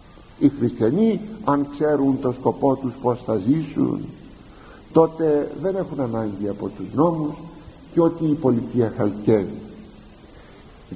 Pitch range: 120-165 Hz